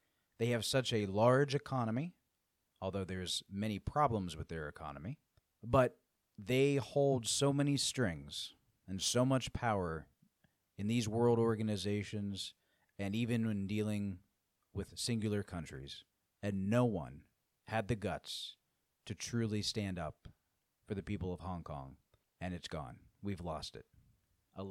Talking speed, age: 140 wpm, 30-49